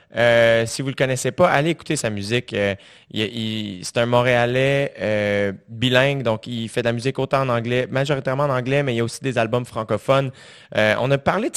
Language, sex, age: French, male, 20-39